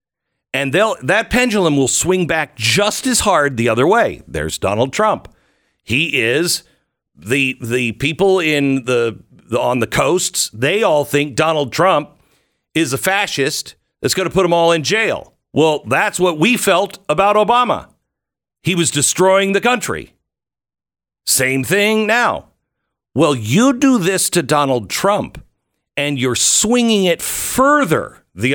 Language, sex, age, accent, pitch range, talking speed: English, male, 50-69, American, 115-185 Hz, 150 wpm